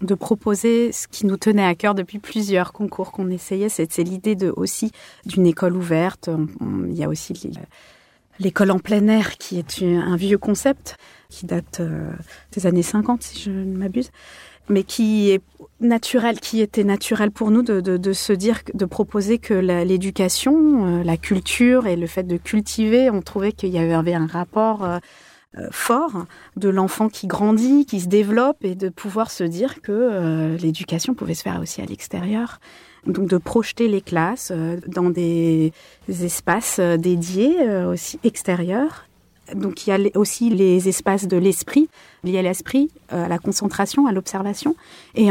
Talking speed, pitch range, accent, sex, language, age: 165 wpm, 175-215 Hz, French, female, French, 30-49